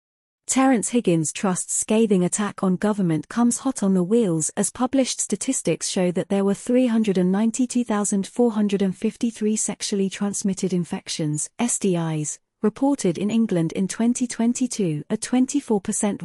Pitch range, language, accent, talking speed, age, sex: 180-230 Hz, English, British, 105 wpm, 30-49, female